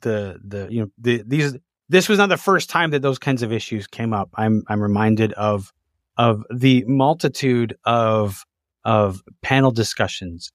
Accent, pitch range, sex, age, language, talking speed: American, 115-160 Hz, male, 30-49, English, 170 wpm